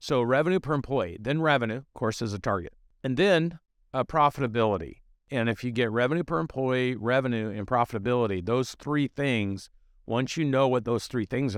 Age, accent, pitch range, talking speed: 50-69, American, 110-140 Hz, 180 wpm